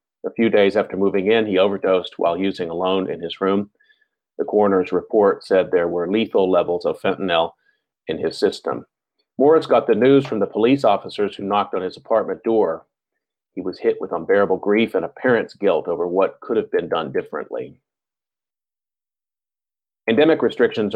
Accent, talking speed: American, 170 wpm